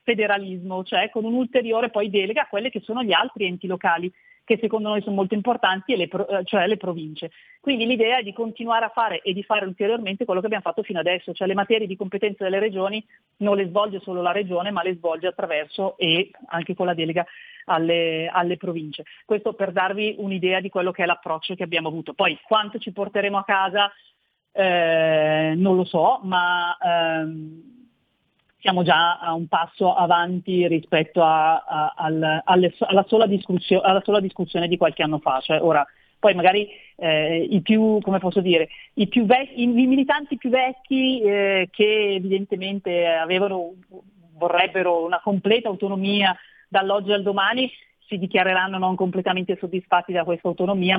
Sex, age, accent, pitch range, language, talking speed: female, 40-59, native, 175-210 Hz, Italian, 175 wpm